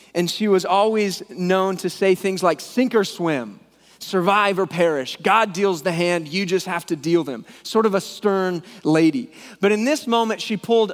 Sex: male